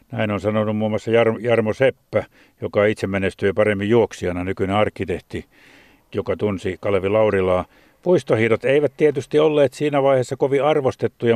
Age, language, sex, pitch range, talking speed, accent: 50-69, Finnish, male, 105-125 Hz, 145 wpm, native